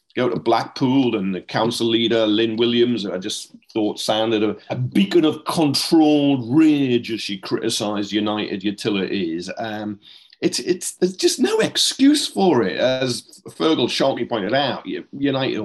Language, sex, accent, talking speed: English, male, British, 150 wpm